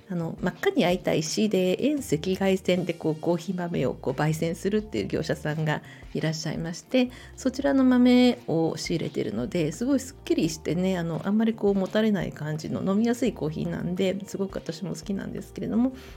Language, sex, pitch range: Japanese, female, 165-240 Hz